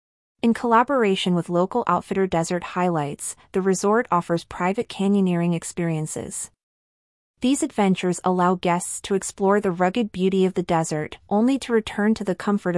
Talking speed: 145 wpm